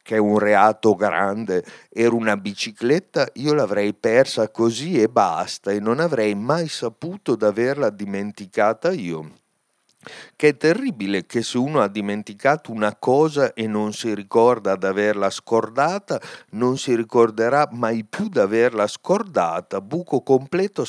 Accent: native